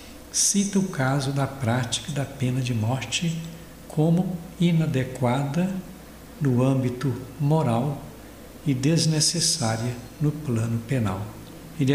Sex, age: male, 60-79